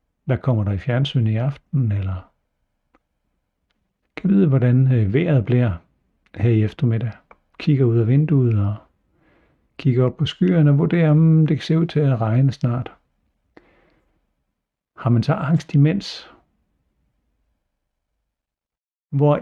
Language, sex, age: Danish, male, 60-79